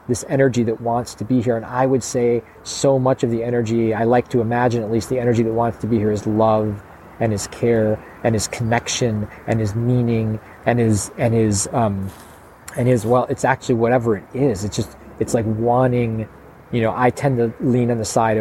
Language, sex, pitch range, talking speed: English, male, 105-120 Hz, 220 wpm